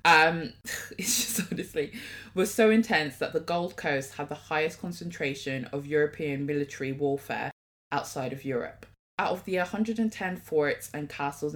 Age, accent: 20-39, British